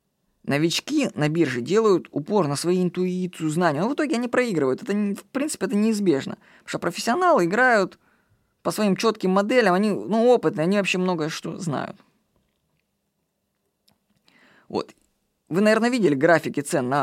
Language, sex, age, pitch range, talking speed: Russian, female, 20-39, 165-225 Hz, 150 wpm